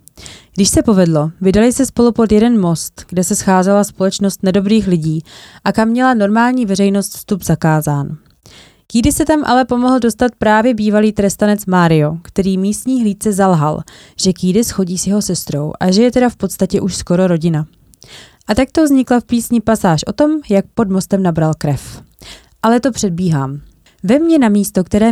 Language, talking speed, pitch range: Czech, 175 wpm, 175-225 Hz